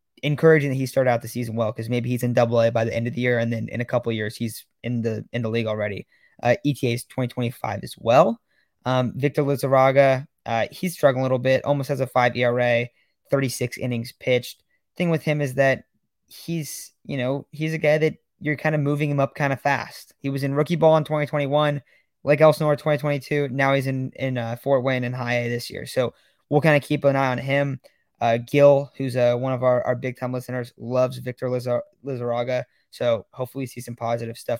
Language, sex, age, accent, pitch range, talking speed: English, male, 20-39, American, 125-145 Hz, 225 wpm